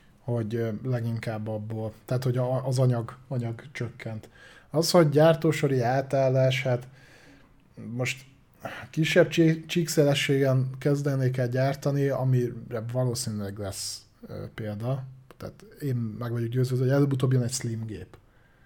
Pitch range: 125-140 Hz